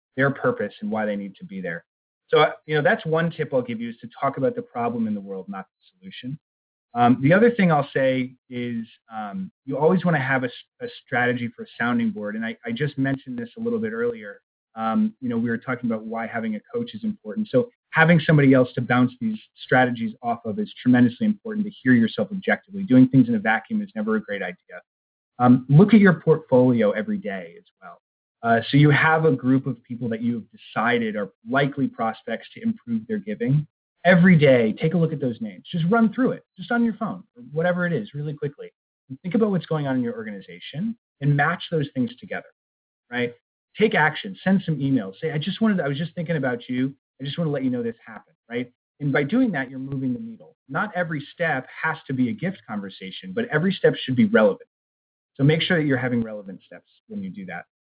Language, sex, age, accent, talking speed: English, male, 20-39, American, 230 wpm